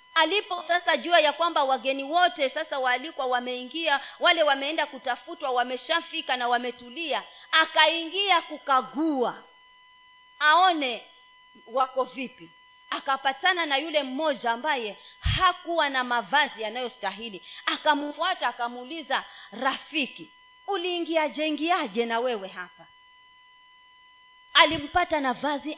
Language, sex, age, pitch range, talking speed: Swahili, female, 30-49, 265-390 Hz, 95 wpm